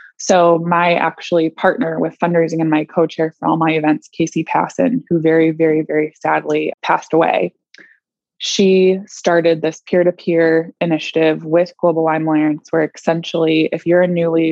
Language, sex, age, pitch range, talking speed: English, female, 20-39, 160-185 Hz, 155 wpm